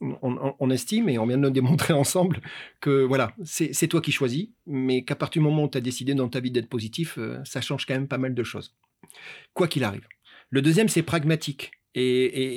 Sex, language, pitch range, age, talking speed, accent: male, French, 125-160 Hz, 40-59, 225 wpm, French